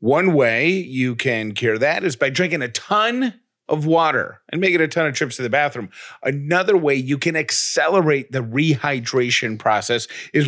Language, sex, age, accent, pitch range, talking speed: English, male, 30-49, American, 115-155 Hz, 185 wpm